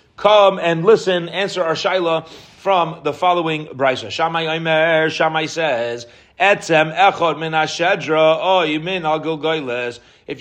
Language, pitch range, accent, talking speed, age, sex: English, 130-175 Hz, American, 105 wpm, 30-49, male